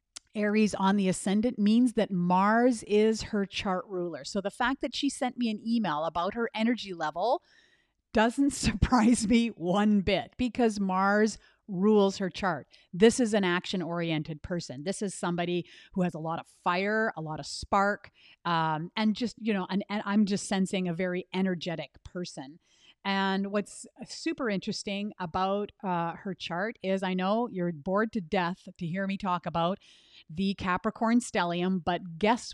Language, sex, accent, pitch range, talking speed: English, female, American, 175-215 Hz, 165 wpm